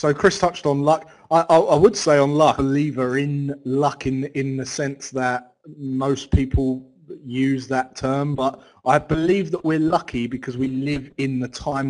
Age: 30-49